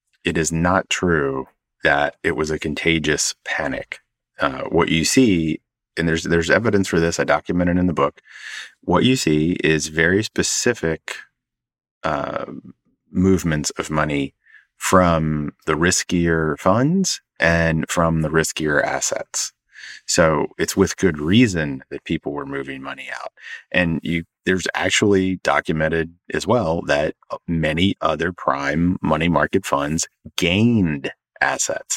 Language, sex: English, male